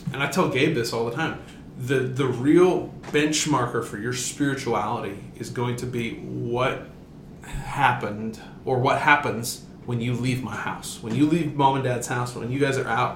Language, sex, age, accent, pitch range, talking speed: English, male, 30-49, American, 120-150 Hz, 185 wpm